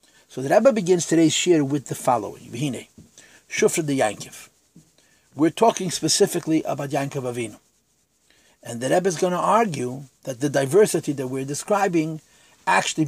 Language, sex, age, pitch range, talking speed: English, male, 50-69, 130-170 Hz, 150 wpm